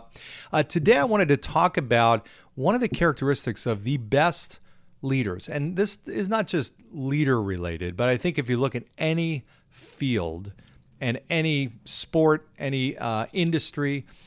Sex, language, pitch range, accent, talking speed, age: male, English, 110-150 Hz, American, 155 wpm, 40-59